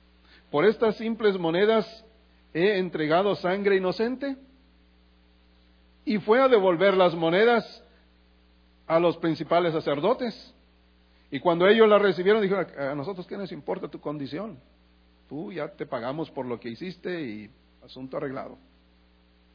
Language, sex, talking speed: English, male, 130 wpm